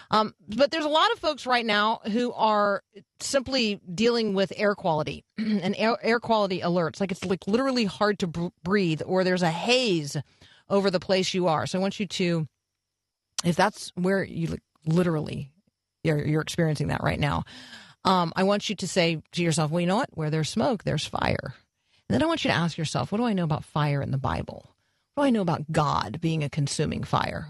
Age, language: 40-59, English